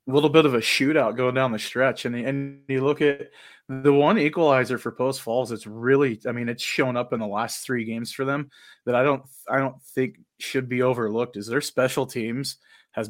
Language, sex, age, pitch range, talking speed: English, male, 20-39, 115-135 Hz, 225 wpm